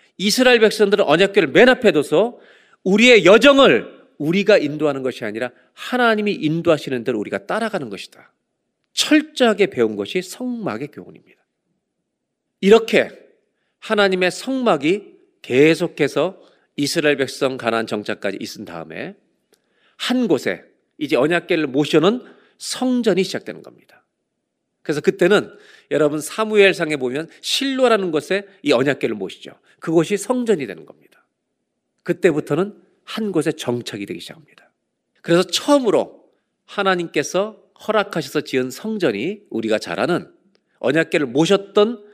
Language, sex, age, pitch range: Korean, male, 40-59, 150-225 Hz